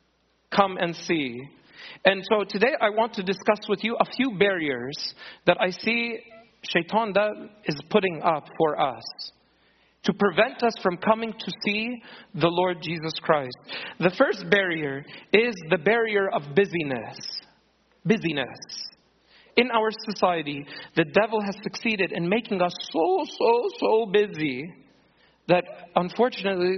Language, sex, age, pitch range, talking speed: English, male, 40-59, 170-225 Hz, 135 wpm